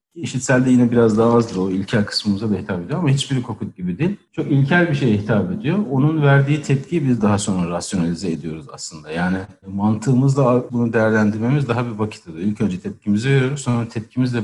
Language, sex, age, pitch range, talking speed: Turkish, male, 60-79, 105-130 Hz, 185 wpm